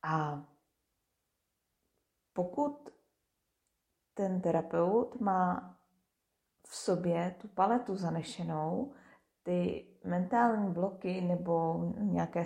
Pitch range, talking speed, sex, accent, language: 170-220 Hz, 70 wpm, female, native, Czech